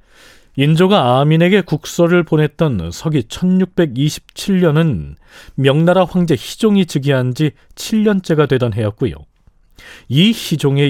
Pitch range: 115-170 Hz